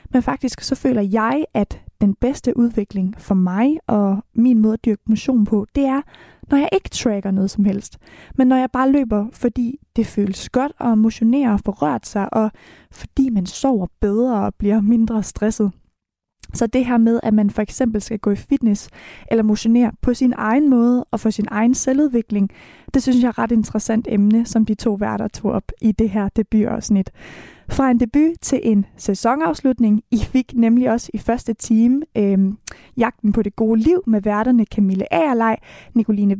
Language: Danish